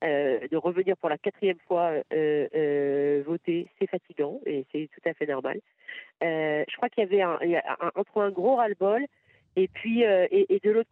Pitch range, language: 170-205 Hz, French